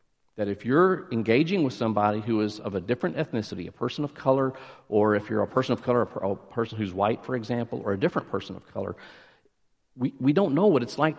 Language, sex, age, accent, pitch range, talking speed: English, male, 50-69, American, 105-135 Hz, 225 wpm